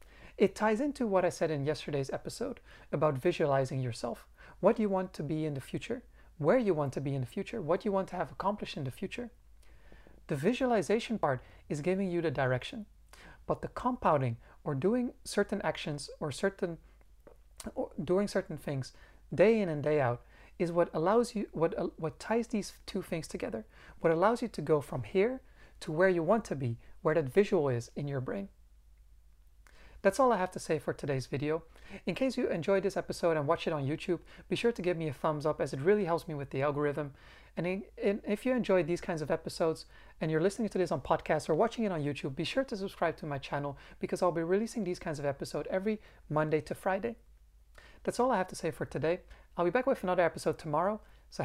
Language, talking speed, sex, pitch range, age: English, 220 wpm, male, 150-195 Hz, 30-49